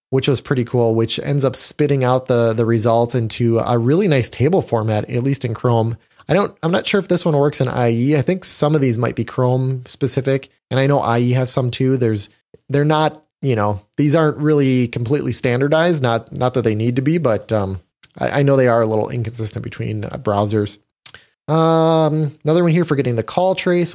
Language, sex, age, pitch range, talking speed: English, male, 20-39, 115-145 Hz, 220 wpm